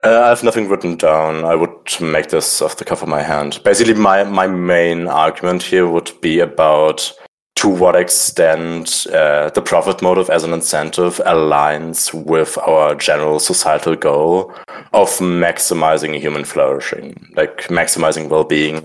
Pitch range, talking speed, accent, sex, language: 75-90 Hz, 155 wpm, German, male, English